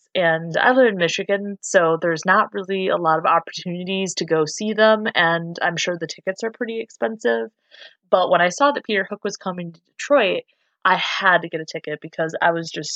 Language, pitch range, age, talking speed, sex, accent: English, 160-190 Hz, 20-39, 215 wpm, female, American